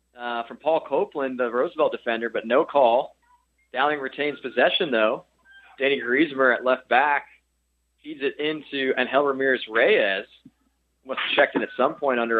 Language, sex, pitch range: English, male, 105-135 Hz